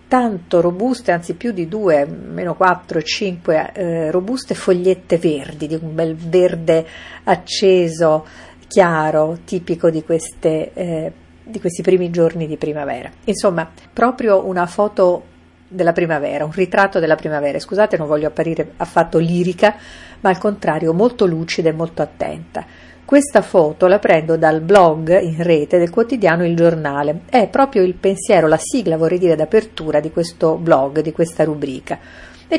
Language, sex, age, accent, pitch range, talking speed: Italian, female, 50-69, native, 160-200 Hz, 150 wpm